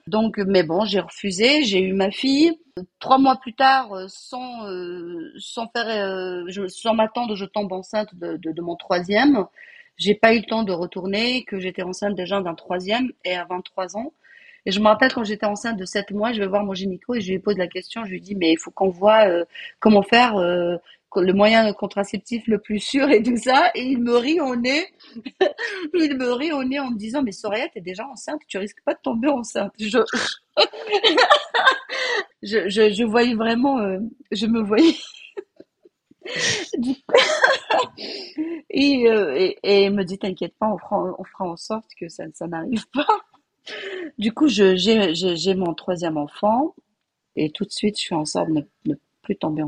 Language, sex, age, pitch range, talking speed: French, female, 40-59, 180-245 Hz, 180 wpm